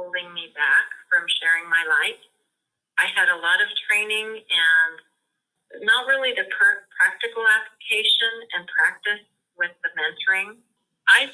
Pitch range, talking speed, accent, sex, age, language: 170-220 Hz, 140 wpm, American, female, 40-59, English